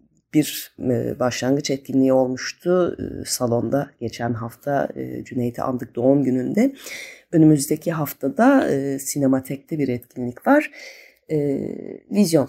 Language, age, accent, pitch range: Turkish, 30-49, native, 130-180 Hz